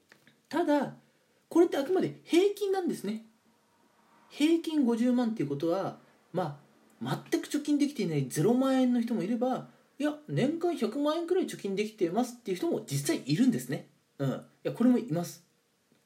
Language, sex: Japanese, male